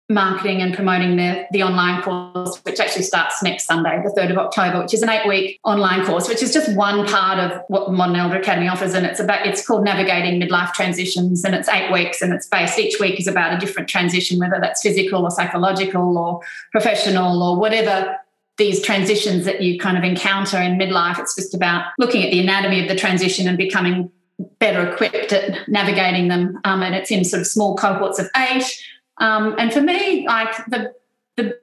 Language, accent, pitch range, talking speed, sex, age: English, Australian, 190-220 Hz, 205 wpm, female, 30-49